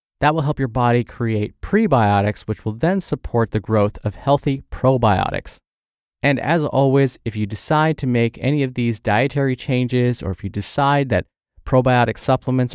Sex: male